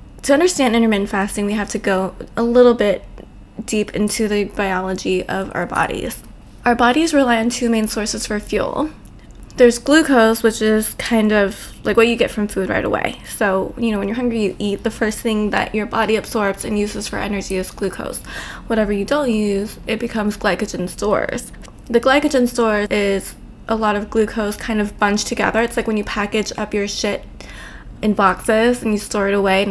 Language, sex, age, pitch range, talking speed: English, female, 20-39, 205-235 Hz, 200 wpm